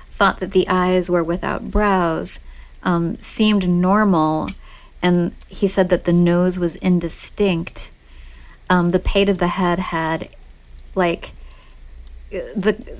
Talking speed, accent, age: 125 wpm, American, 40-59